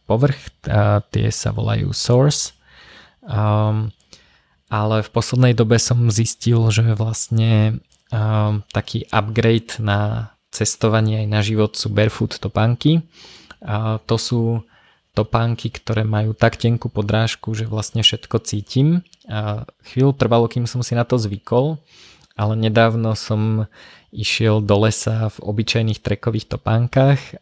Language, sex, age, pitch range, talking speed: Slovak, male, 20-39, 105-115 Hz, 125 wpm